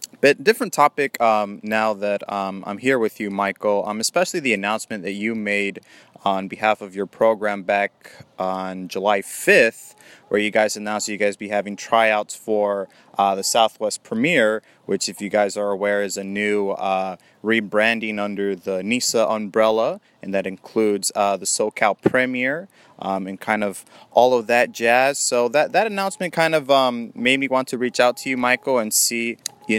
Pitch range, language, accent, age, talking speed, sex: 100-125 Hz, English, American, 20-39, 185 wpm, male